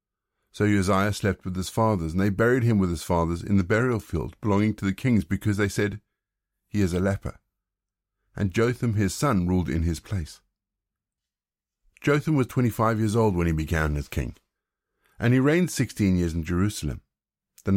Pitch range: 85-110 Hz